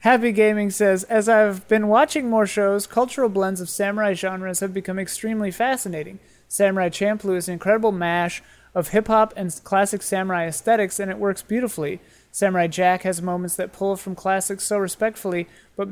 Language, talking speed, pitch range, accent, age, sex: English, 170 wpm, 180-210 Hz, American, 30-49, male